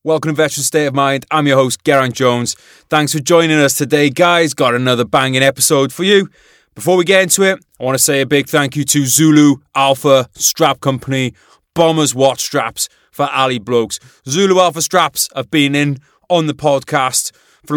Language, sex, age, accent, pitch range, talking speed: English, male, 20-39, British, 120-150 Hz, 195 wpm